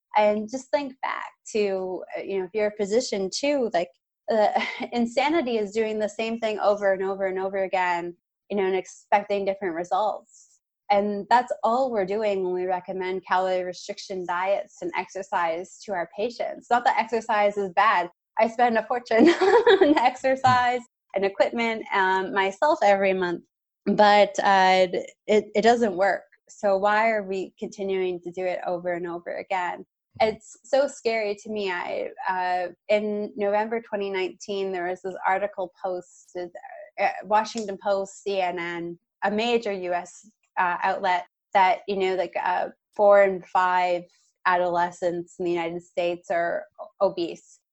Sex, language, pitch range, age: female, English, 180-220 Hz, 20-39